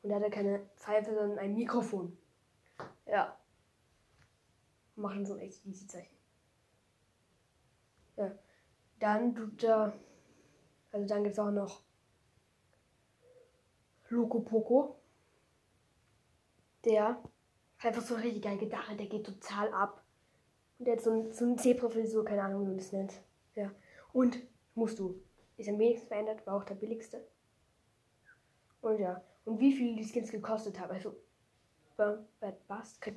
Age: 10-29